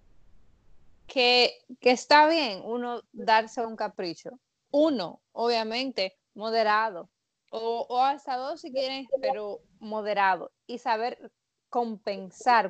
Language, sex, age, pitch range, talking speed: Spanish, female, 20-39, 205-260 Hz, 105 wpm